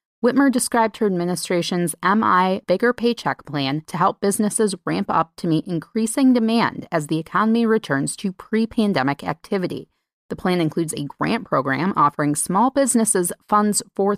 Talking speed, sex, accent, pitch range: 150 wpm, female, American, 170-220 Hz